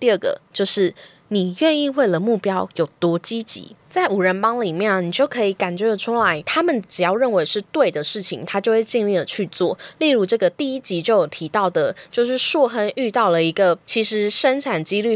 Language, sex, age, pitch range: Chinese, female, 20-39, 180-245 Hz